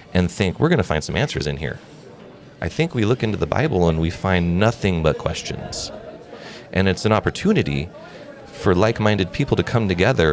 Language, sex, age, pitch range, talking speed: English, male, 30-49, 80-105 Hz, 185 wpm